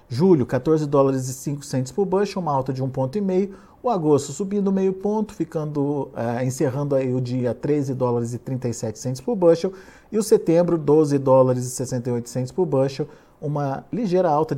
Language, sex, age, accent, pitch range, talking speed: Portuguese, male, 50-69, Brazilian, 125-165 Hz, 180 wpm